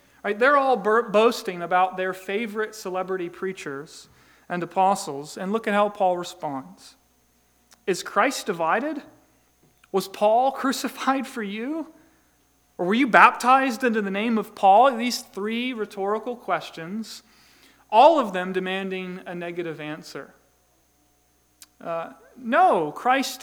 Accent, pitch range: American, 180-235 Hz